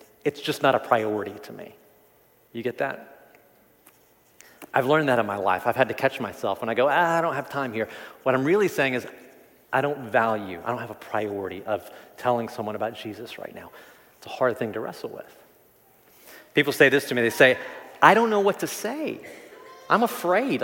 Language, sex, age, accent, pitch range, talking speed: English, male, 30-49, American, 125-170 Hz, 210 wpm